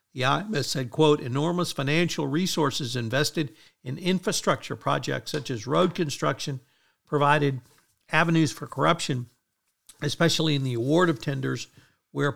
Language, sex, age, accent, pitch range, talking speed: English, male, 50-69, American, 125-160 Hz, 120 wpm